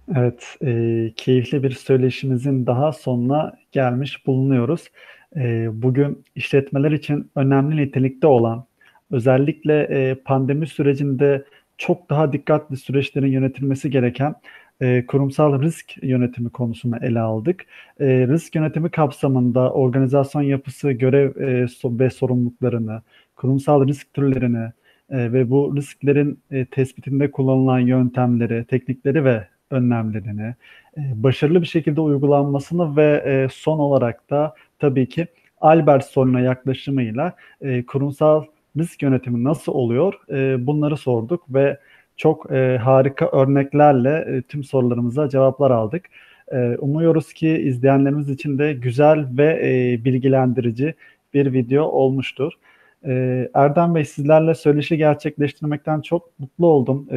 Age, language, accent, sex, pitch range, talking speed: 40-59, Turkish, native, male, 130-150 Hz, 100 wpm